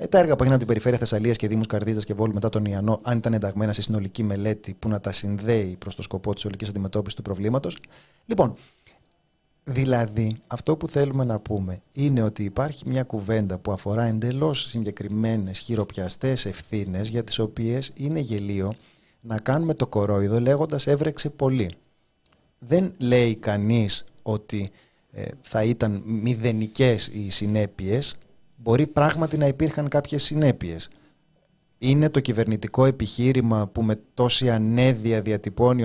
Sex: male